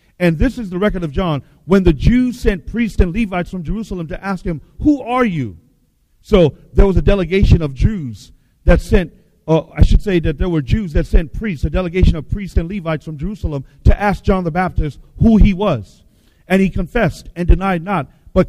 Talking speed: 210 wpm